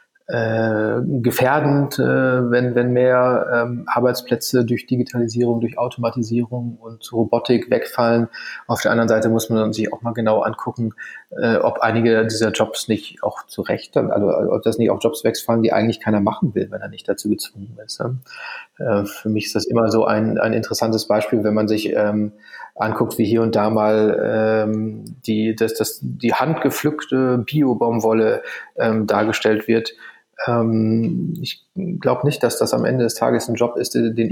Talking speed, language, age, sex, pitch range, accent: 155 wpm, German, 30-49, male, 110-125 Hz, German